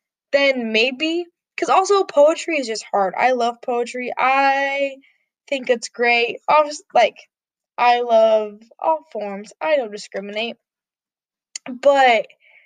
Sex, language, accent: female, English, American